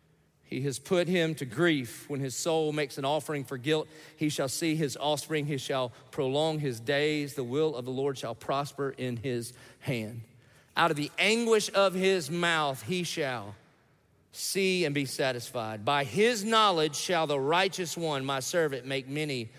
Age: 40-59